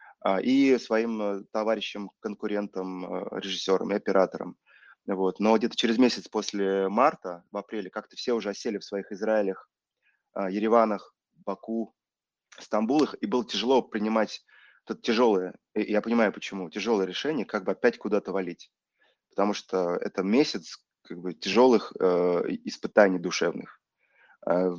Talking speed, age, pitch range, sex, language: 125 wpm, 20-39, 95-110 Hz, male, Russian